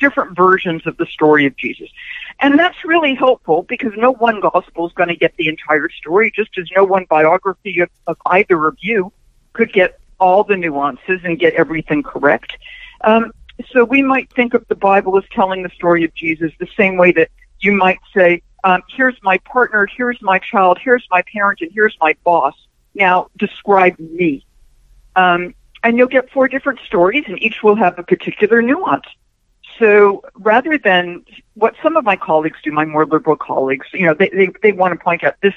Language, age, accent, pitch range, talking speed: English, 60-79, American, 170-245 Hz, 195 wpm